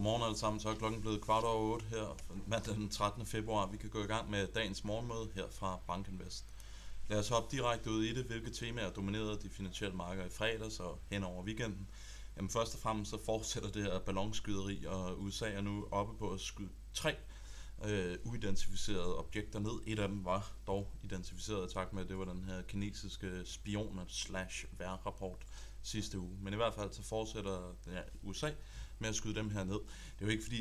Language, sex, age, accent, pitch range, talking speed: Danish, male, 30-49, native, 95-110 Hz, 210 wpm